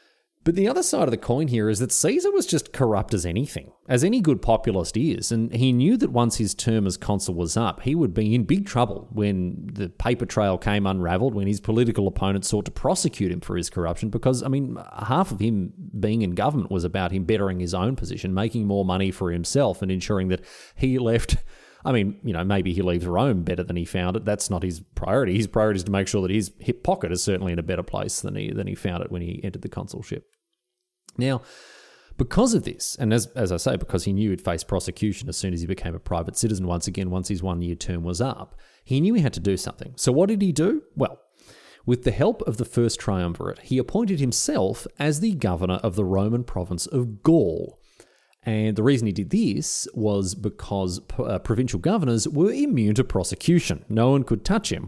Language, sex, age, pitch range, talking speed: English, male, 30-49, 95-125 Hz, 225 wpm